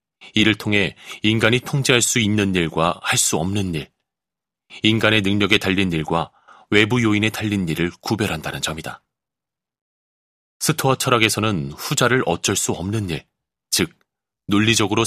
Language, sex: Korean, male